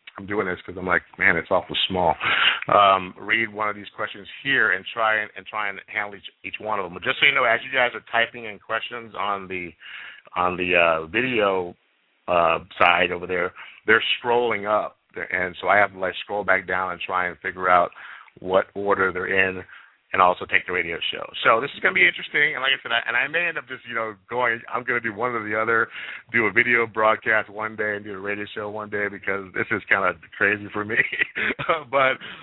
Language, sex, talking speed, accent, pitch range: English, male, 240 wpm, American, 95-115 Hz